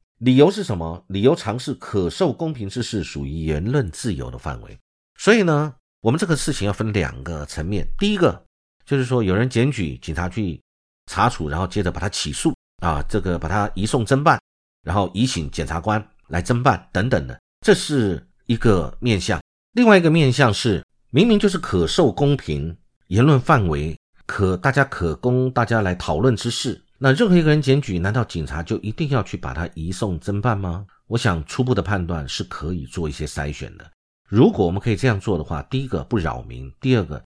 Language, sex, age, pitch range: Chinese, male, 50-69, 85-130 Hz